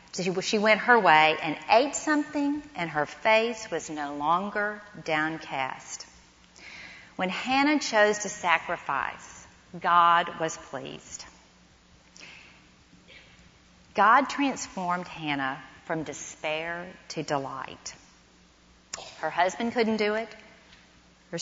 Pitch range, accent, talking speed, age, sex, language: 130-185 Hz, American, 100 wpm, 40-59, female, English